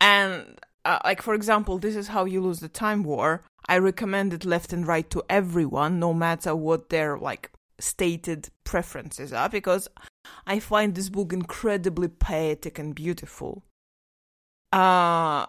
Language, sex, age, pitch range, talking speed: English, female, 20-39, 165-205 Hz, 150 wpm